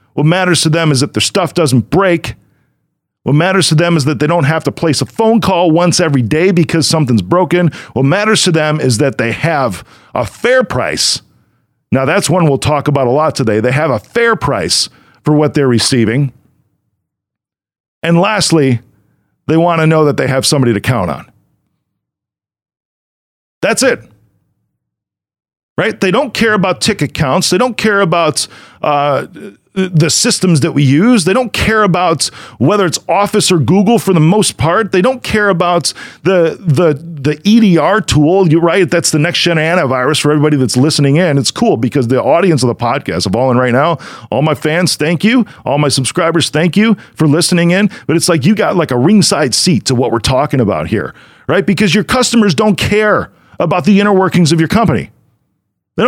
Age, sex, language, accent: 40-59, male, English, American